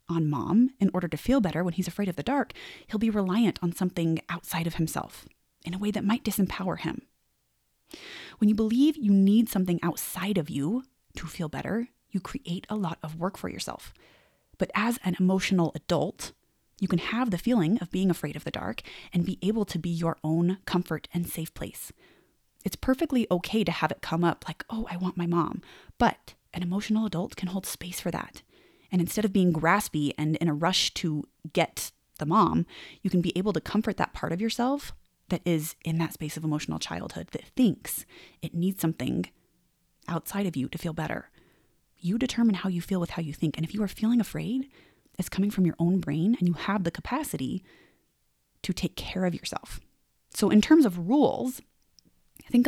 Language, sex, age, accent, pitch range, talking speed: English, female, 20-39, American, 165-205 Hz, 200 wpm